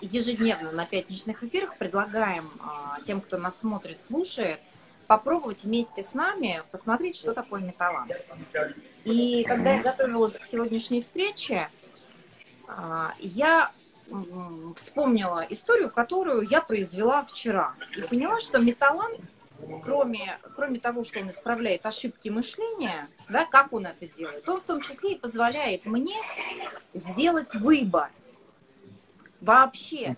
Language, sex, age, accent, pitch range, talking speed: Russian, female, 30-49, native, 190-275 Hz, 125 wpm